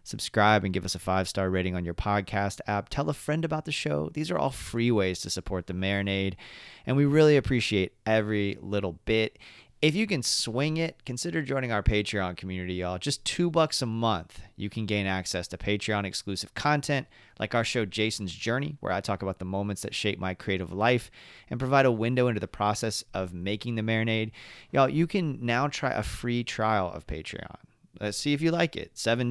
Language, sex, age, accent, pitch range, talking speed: English, male, 30-49, American, 100-130 Hz, 205 wpm